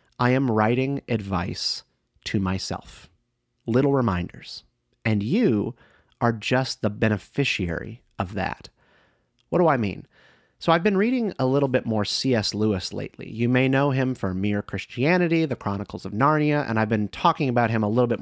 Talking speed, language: 170 wpm, English